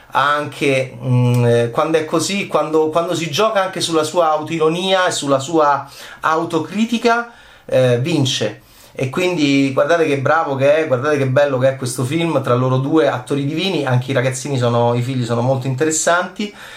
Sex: male